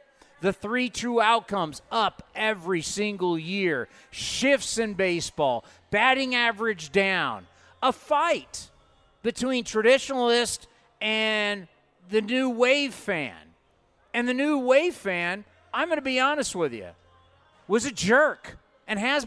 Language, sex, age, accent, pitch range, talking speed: English, male, 40-59, American, 175-240 Hz, 125 wpm